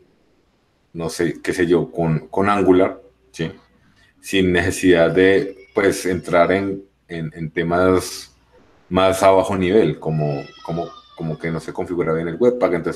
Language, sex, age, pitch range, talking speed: Spanish, male, 30-49, 85-110 Hz, 155 wpm